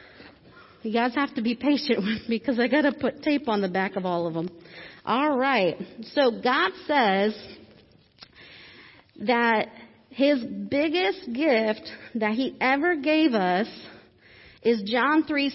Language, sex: English, female